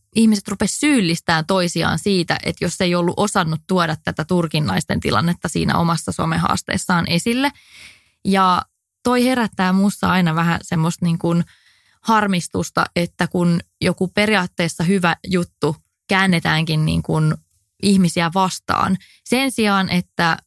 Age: 20-39